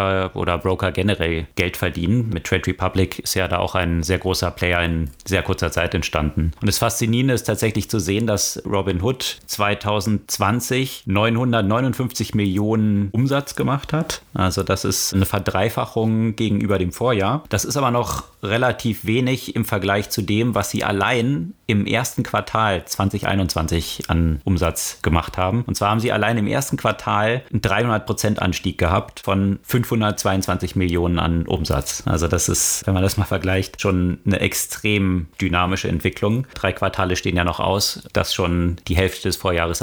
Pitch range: 95-110 Hz